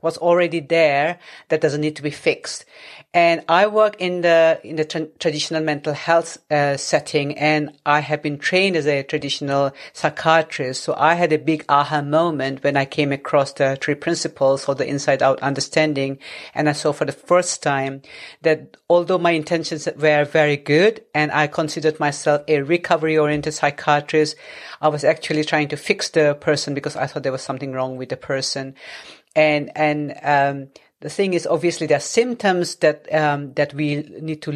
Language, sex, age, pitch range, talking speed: English, female, 50-69, 145-165 Hz, 180 wpm